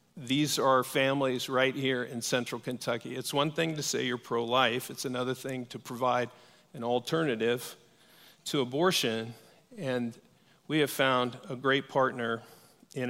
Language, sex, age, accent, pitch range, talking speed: English, male, 50-69, American, 125-160 Hz, 145 wpm